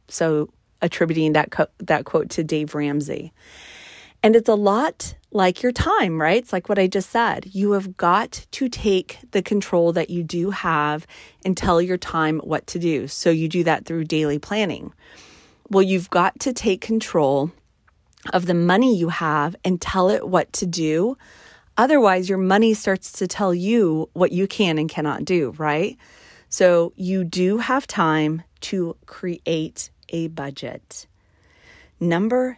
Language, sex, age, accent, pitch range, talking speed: English, female, 30-49, American, 155-195 Hz, 160 wpm